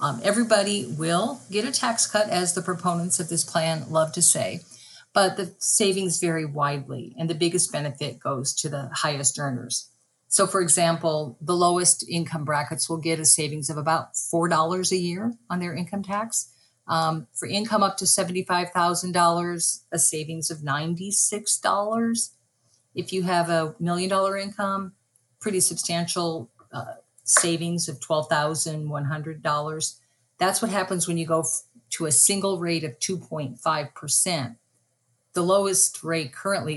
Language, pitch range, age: English, 140-175 Hz, 50-69